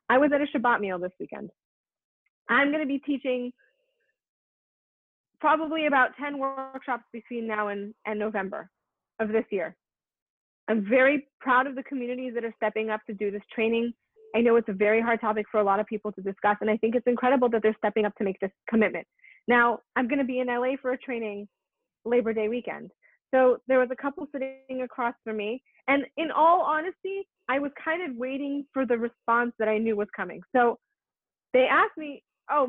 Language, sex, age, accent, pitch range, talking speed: English, female, 30-49, American, 220-280 Hz, 200 wpm